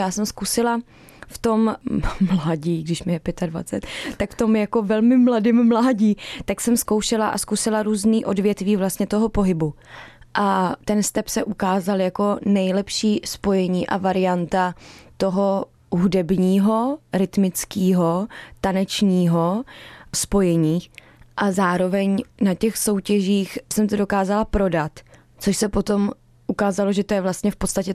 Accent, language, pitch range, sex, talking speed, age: native, Czech, 185-215 Hz, female, 130 wpm, 20-39